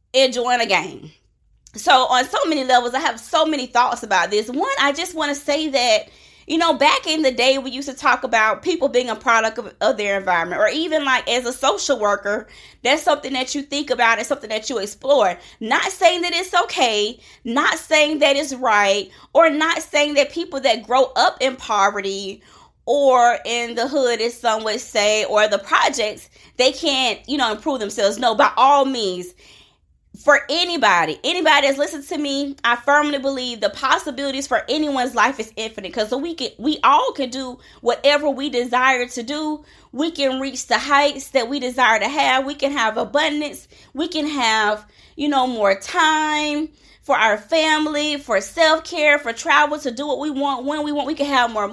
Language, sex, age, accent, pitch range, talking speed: English, female, 20-39, American, 240-300 Hz, 195 wpm